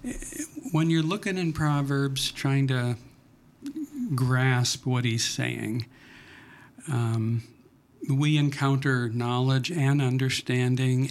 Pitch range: 120-150 Hz